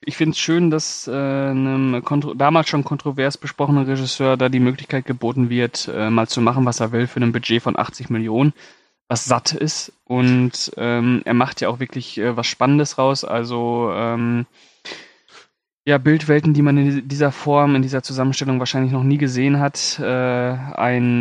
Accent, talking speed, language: German, 180 wpm, German